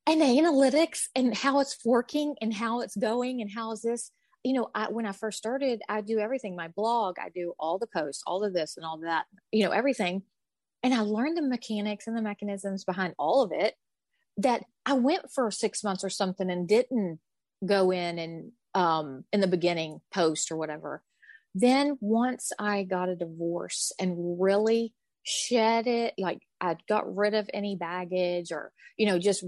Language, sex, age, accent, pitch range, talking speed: English, female, 30-49, American, 180-230 Hz, 190 wpm